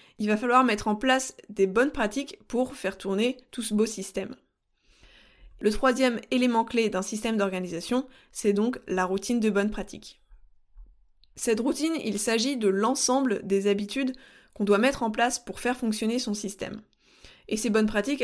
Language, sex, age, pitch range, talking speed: French, female, 20-39, 200-250 Hz, 170 wpm